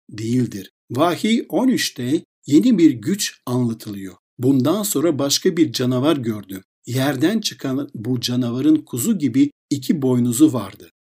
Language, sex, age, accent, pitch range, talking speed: Turkish, male, 60-79, native, 125-185 Hz, 120 wpm